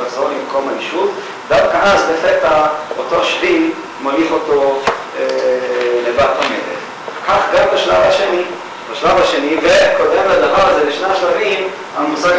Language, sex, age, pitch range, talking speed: Hebrew, male, 40-59, 140-215 Hz, 120 wpm